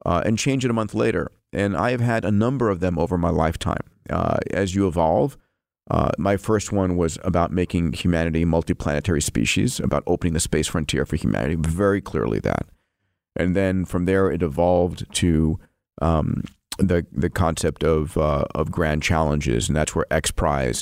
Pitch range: 80-100 Hz